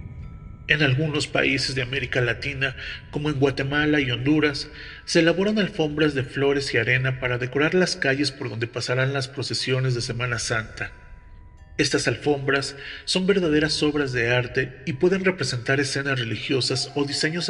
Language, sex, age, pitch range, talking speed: Spanish, male, 40-59, 125-150 Hz, 150 wpm